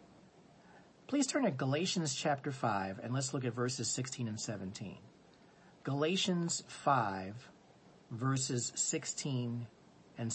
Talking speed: 110 wpm